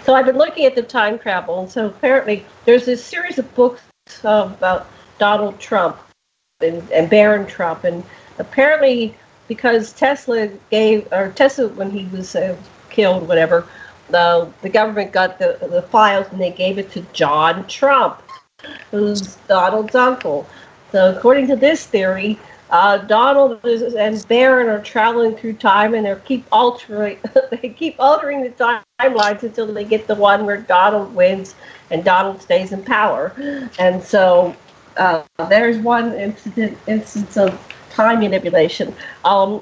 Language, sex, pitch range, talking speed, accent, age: English, female, 195-245 Hz, 150 wpm, American, 50-69